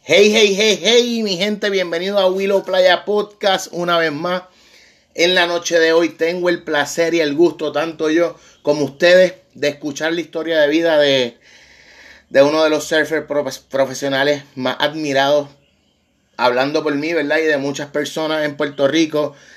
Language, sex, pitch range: Spanish, male, 135-160 Hz